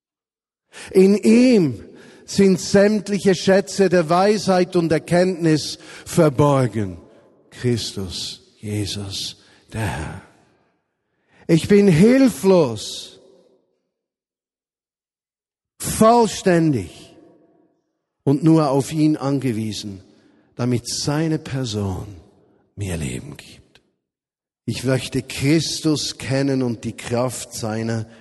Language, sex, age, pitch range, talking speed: German, male, 50-69, 110-150 Hz, 80 wpm